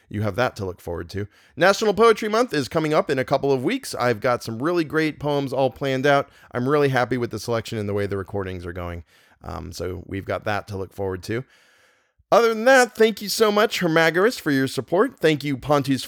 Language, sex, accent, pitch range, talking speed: English, male, American, 100-150 Hz, 235 wpm